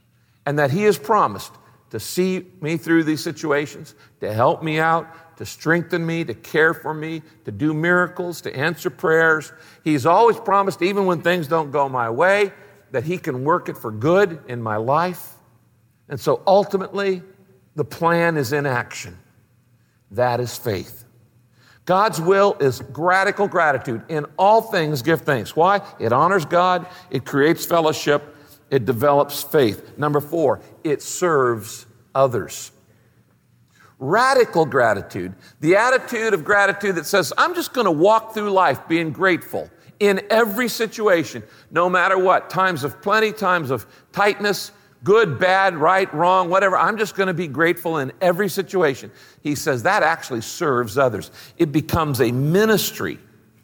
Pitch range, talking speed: 140-190 Hz, 155 wpm